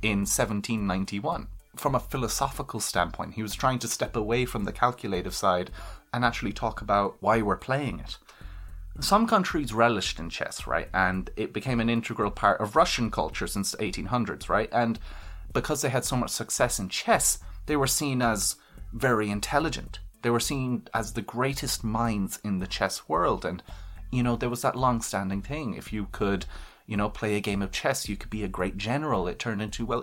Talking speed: 195 wpm